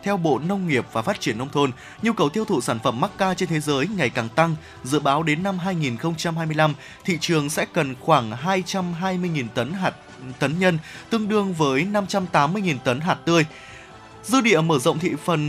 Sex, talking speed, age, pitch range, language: male, 195 wpm, 20-39, 130-190 Hz, Vietnamese